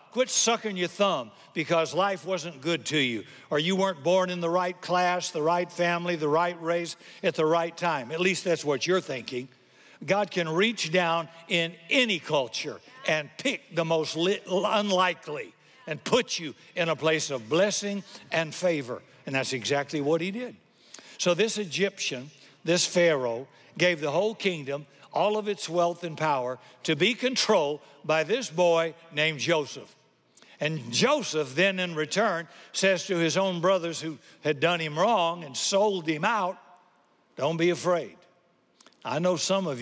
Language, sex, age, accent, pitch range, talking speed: English, male, 60-79, American, 145-185 Hz, 165 wpm